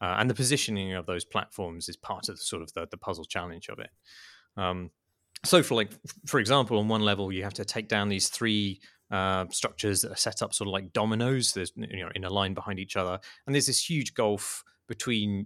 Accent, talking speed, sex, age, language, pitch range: British, 235 wpm, male, 30-49, English, 90-110 Hz